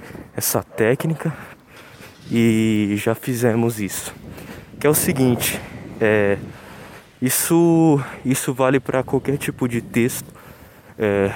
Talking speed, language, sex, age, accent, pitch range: 105 wpm, Portuguese, male, 20-39, Brazilian, 115-150 Hz